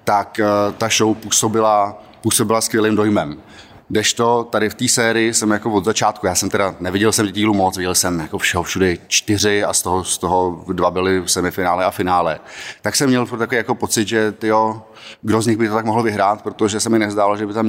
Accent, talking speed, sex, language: native, 205 wpm, male, Czech